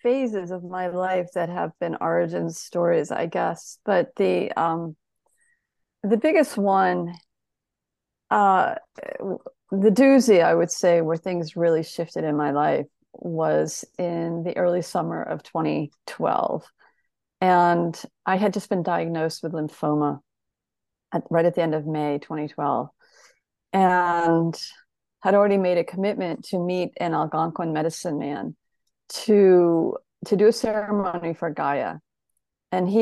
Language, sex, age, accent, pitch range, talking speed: English, female, 30-49, American, 155-190 Hz, 135 wpm